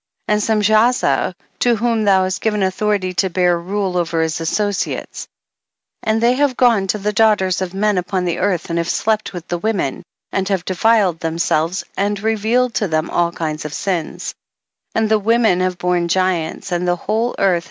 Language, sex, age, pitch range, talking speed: English, female, 50-69, 170-210 Hz, 185 wpm